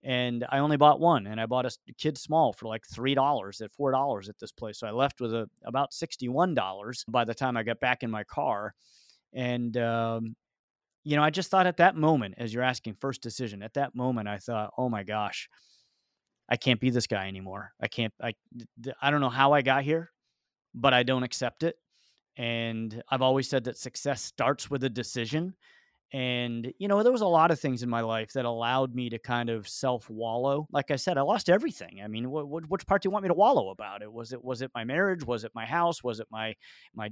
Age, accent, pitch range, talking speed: 30-49, American, 115-150 Hz, 225 wpm